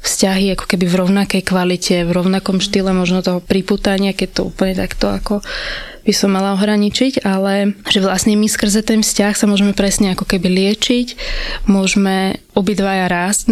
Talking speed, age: 160 wpm, 20-39